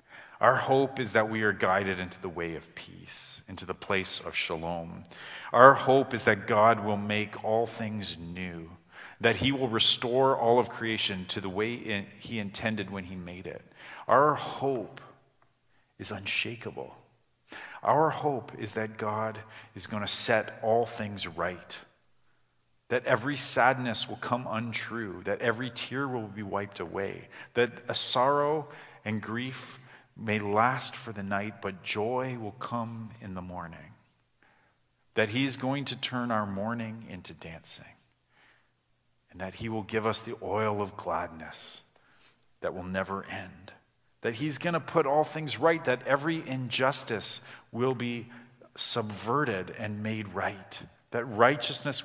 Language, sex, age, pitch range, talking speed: English, male, 40-59, 105-125 Hz, 150 wpm